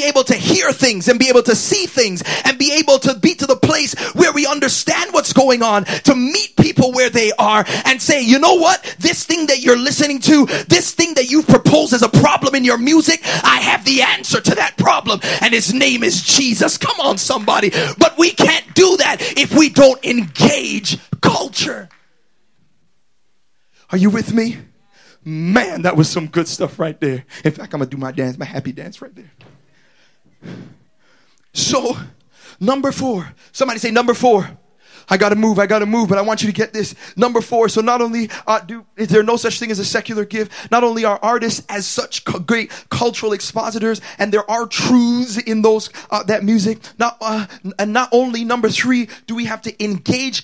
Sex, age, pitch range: male, 30-49, 210-265 Hz